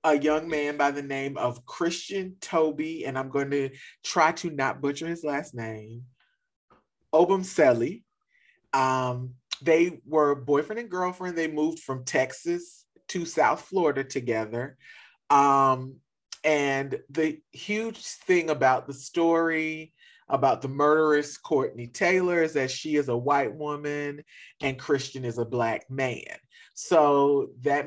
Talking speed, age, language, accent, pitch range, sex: 140 wpm, 40-59, English, American, 125-160 Hz, male